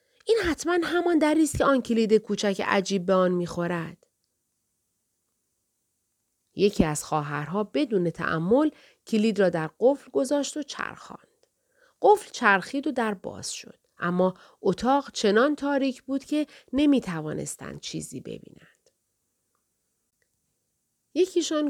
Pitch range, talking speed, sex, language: 170-275 Hz, 110 wpm, female, Persian